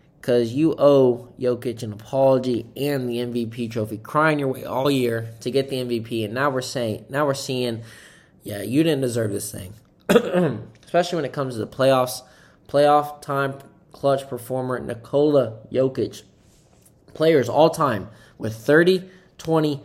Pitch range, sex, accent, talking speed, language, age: 110-145 Hz, male, American, 155 wpm, English, 20-39